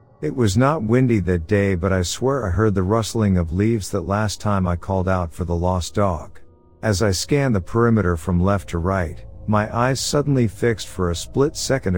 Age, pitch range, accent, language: 50-69, 90-115 Hz, American, English